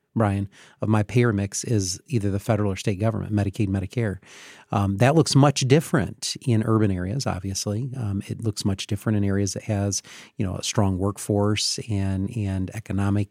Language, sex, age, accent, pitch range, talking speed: English, male, 40-59, American, 100-120 Hz, 180 wpm